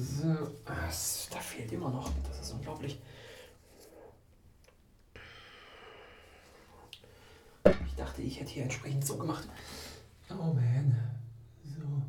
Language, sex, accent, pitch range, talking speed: German, male, German, 125-155 Hz, 95 wpm